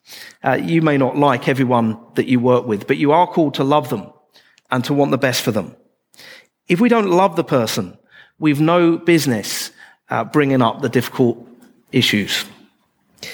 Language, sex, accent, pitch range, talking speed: English, male, British, 125-150 Hz, 175 wpm